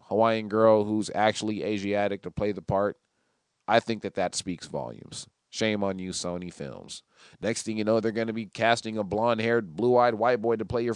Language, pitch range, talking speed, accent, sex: English, 105-125 Hz, 205 wpm, American, male